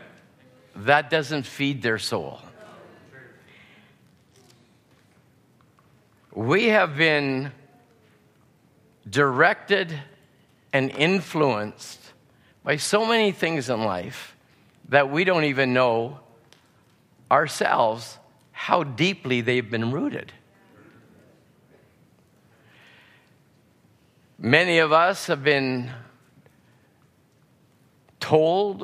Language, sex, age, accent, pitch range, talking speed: English, male, 50-69, American, 115-155 Hz, 70 wpm